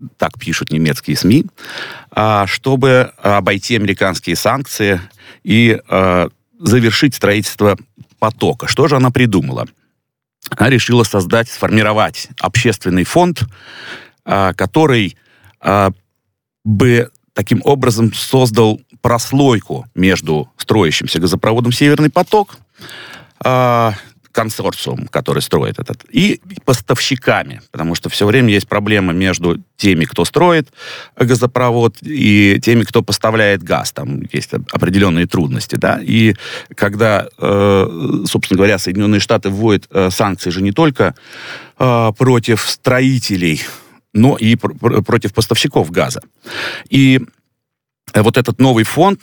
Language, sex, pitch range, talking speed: Russian, male, 100-125 Hz, 100 wpm